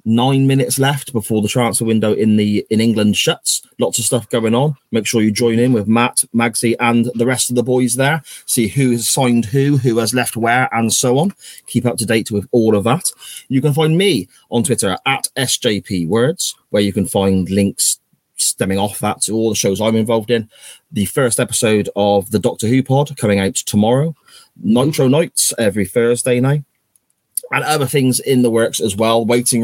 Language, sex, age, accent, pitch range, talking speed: English, male, 30-49, British, 110-135 Hz, 200 wpm